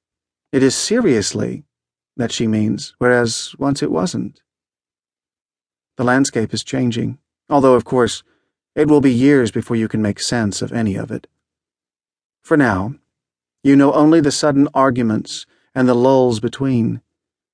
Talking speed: 145 wpm